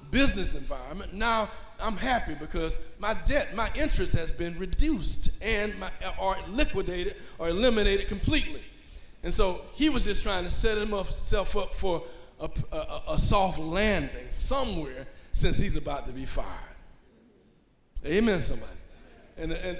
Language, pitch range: English, 165-220 Hz